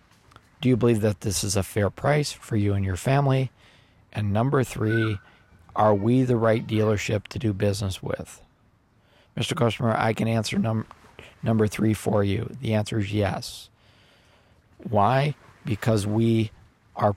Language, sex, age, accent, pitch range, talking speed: English, male, 50-69, American, 105-120 Hz, 155 wpm